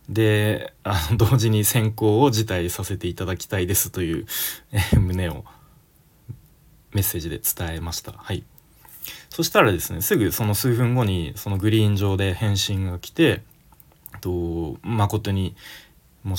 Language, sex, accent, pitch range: Japanese, male, native, 90-120 Hz